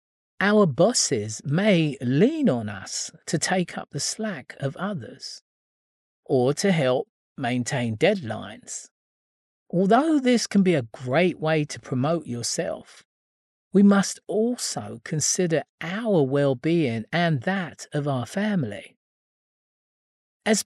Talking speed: 115 wpm